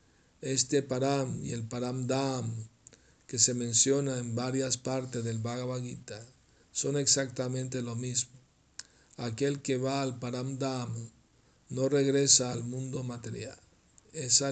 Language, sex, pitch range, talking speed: Spanish, male, 120-135 Hz, 120 wpm